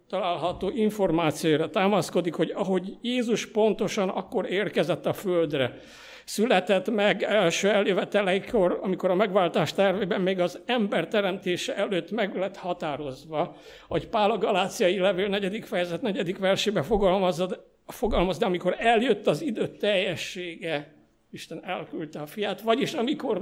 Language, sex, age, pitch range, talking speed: Hungarian, male, 60-79, 180-220 Hz, 125 wpm